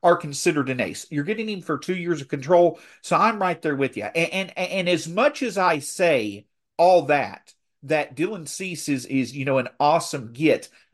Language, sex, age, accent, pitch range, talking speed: English, male, 50-69, American, 140-190 Hz, 210 wpm